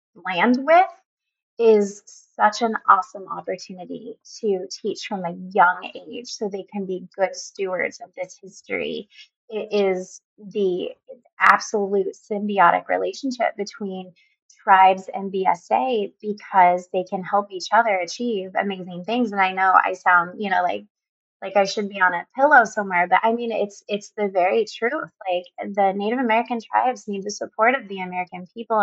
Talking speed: 160 wpm